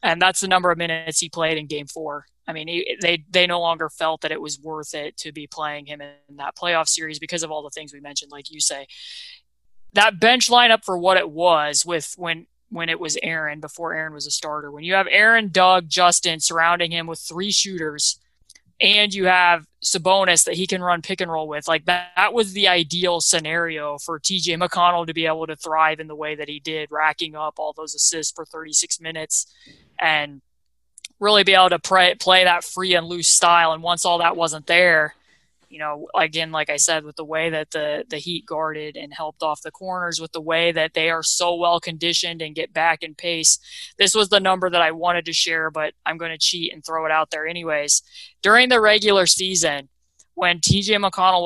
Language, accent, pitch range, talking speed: English, American, 155-180 Hz, 220 wpm